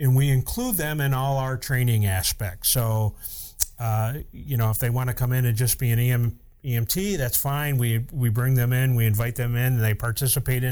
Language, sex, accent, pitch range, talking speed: English, male, American, 115-135 Hz, 215 wpm